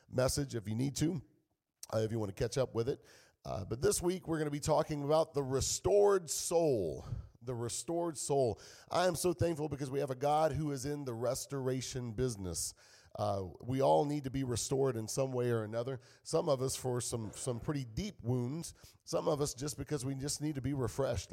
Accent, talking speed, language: American, 215 wpm, English